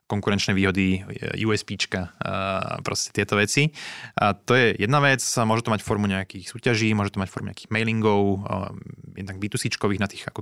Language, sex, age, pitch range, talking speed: Slovak, male, 20-39, 95-110 Hz, 165 wpm